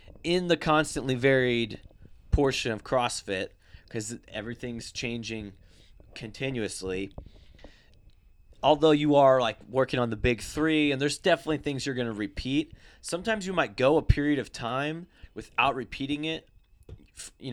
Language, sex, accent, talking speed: English, male, American, 135 wpm